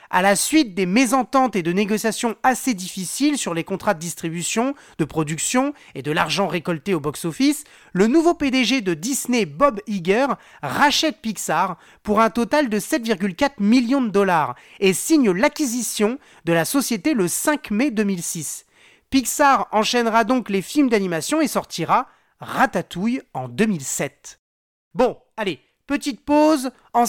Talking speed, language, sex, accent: 145 wpm, French, male, French